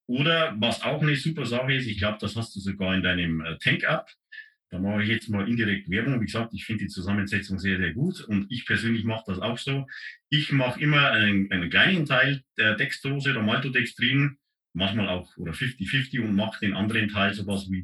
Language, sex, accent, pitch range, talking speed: German, male, German, 100-135 Hz, 205 wpm